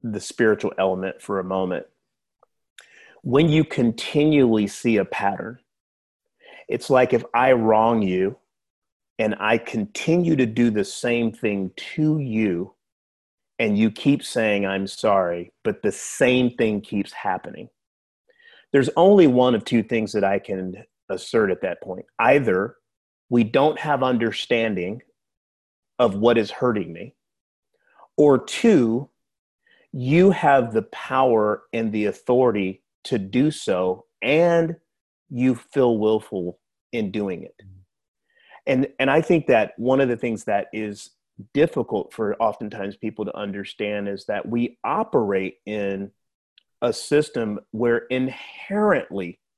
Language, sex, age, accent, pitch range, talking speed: English, male, 30-49, American, 100-130 Hz, 130 wpm